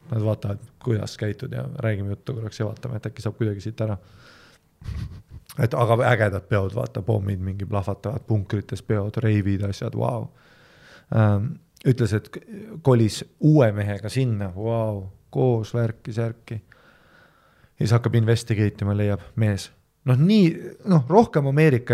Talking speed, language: 140 wpm, English